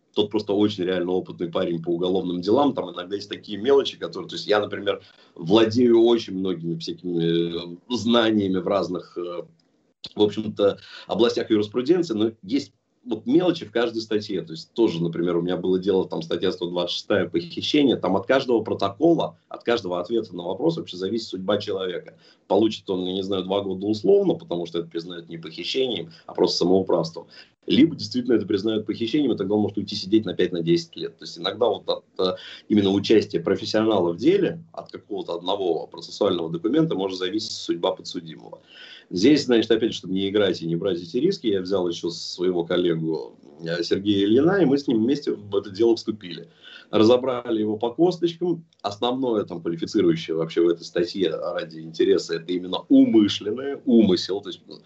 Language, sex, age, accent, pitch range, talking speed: Russian, male, 30-49, native, 90-125 Hz, 170 wpm